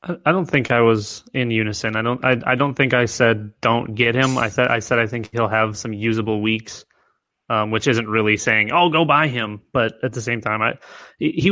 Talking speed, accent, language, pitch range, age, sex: 240 wpm, American, English, 110-130 Hz, 20-39, male